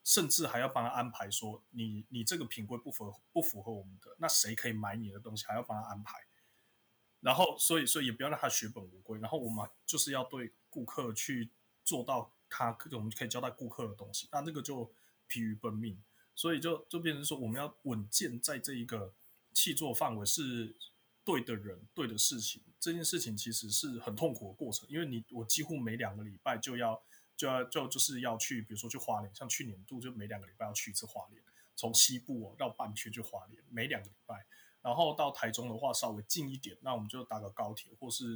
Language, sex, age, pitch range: Chinese, male, 20-39, 105-125 Hz